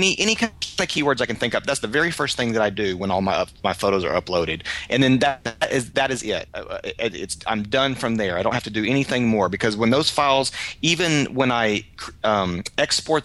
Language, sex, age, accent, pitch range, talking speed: English, male, 30-49, American, 100-135 Hz, 245 wpm